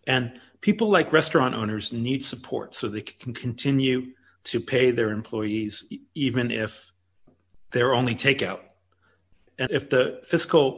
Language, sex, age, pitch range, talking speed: English, male, 40-59, 110-135 Hz, 135 wpm